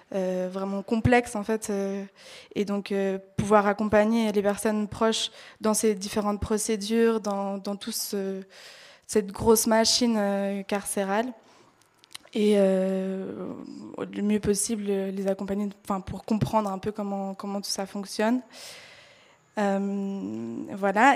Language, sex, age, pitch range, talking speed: French, female, 20-39, 195-220 Hz, 130 wpm